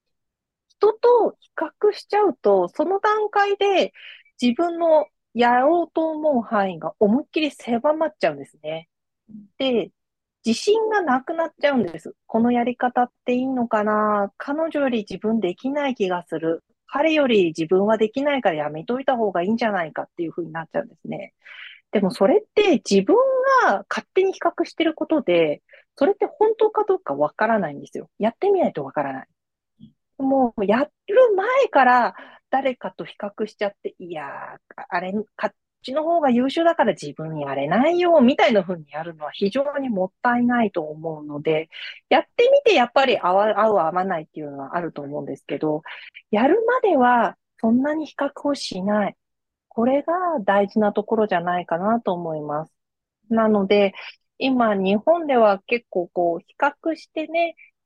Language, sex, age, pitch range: English, female, 40-59, 195-310 Hz